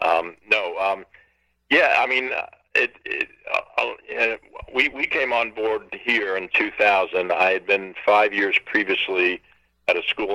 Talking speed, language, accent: 170 wpm, English, American